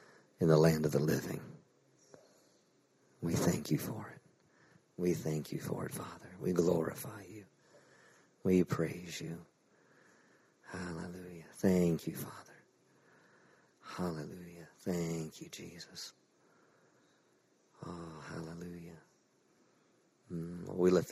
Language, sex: English, male